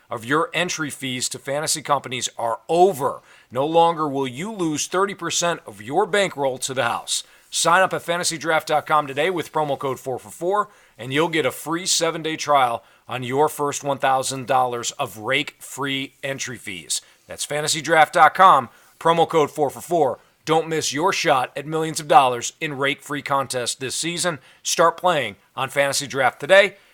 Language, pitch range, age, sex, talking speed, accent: English, 140-175 Hz, 40-59, male, 155 wpm, American